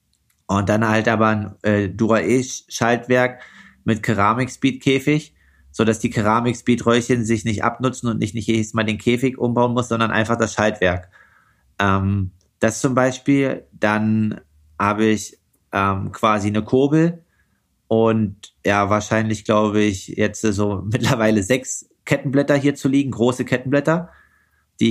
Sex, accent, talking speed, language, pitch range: male, German, 130 wpm, German, 100-120 Hz